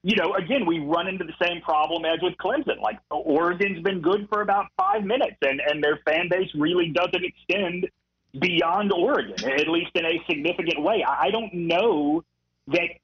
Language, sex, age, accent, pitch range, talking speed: English, male, 40-59, American, 160-210 Hz, 185 wpm